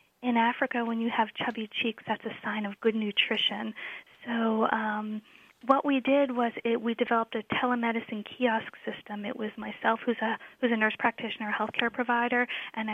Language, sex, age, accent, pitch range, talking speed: English, female, 10-29, American, 215-245 Hz, 180 wpm